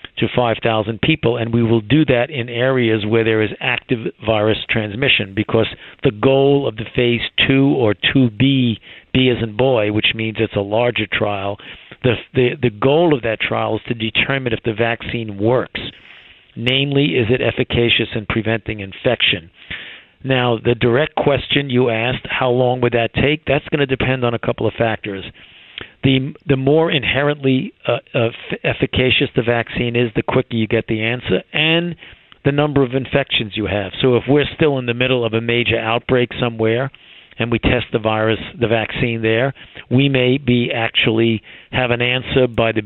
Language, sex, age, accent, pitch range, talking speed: English, male, 50-69, American, 110-130 Hz, 180 wpm